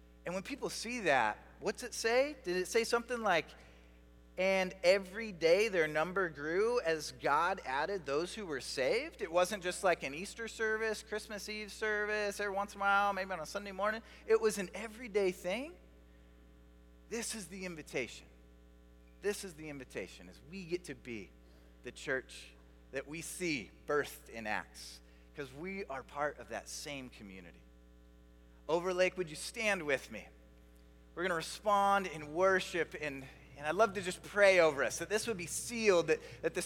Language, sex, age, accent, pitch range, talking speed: English, male, 30-49, American, 130-215 Hz, 180 wpm